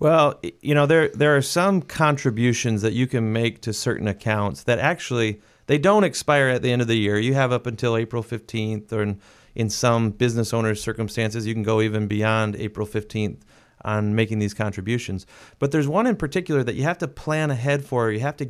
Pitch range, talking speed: 110-135 Hz, 210 wpm